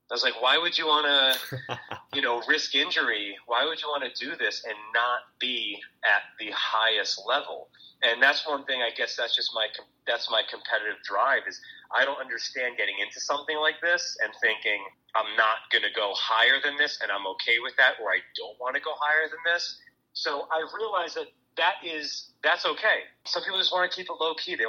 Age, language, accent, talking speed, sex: 30-49, English, American, 220 wpm, male